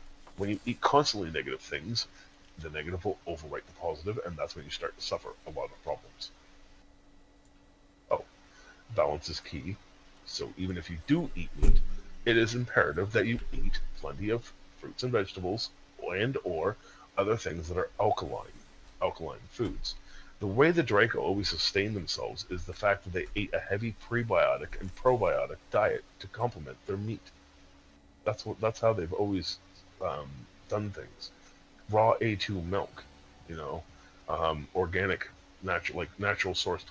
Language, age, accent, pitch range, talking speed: English, 40-59, American, 75-100 Hz, 155 wpm